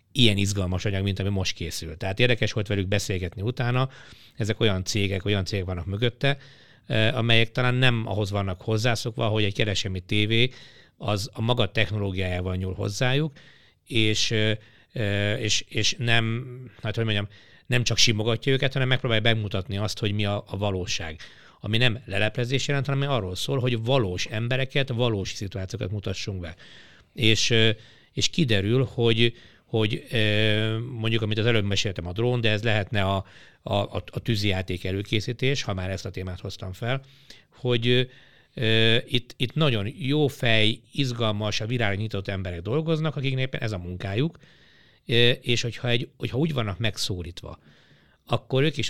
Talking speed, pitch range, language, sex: 145 wpm, 100-125 Hz, Hungarian, male